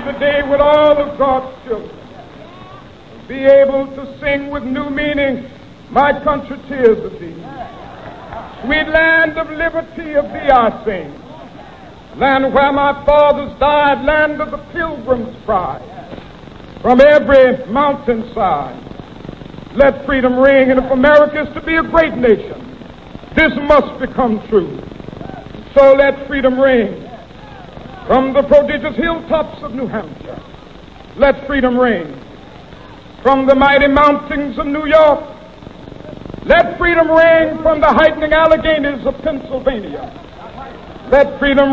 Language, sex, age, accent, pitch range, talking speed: English, male, 60-79, American, 270-305 Hz, 125 wpm